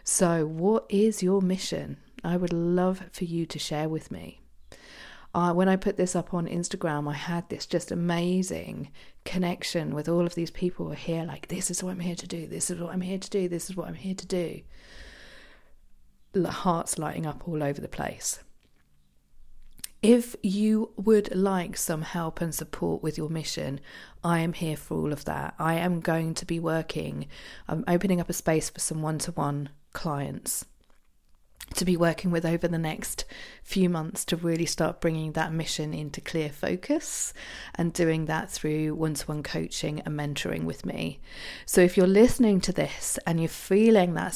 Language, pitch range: English, 155-185 Hz